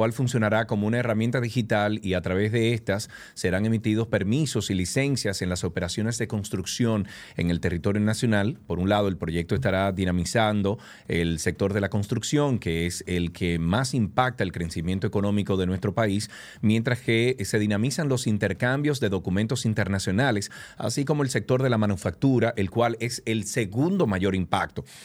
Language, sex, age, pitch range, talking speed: Spanish, male, 30-49, 100-120 Hz, 170 wpm